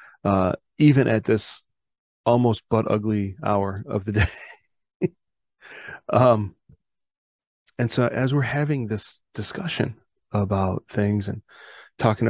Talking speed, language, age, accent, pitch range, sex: 110 wpm, English, 30-49, American, 105-120 Hz, male